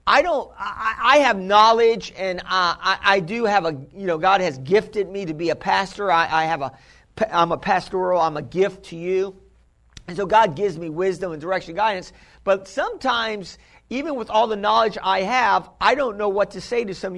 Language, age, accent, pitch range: English, 50-69, American, 180-220 Hz